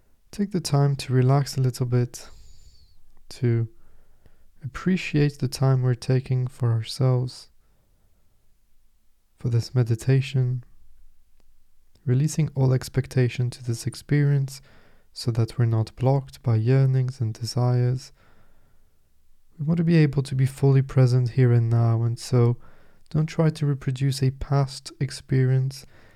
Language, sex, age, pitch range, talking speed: English, male, 20-39, 105-130 Hz, 125 wpm